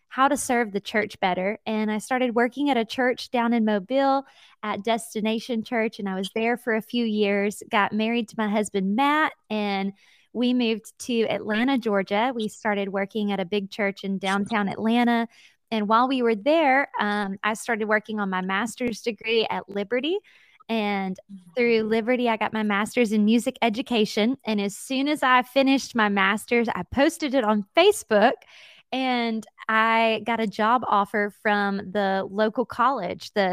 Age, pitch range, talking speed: 20-39, 205-245 Hz, 175 wpm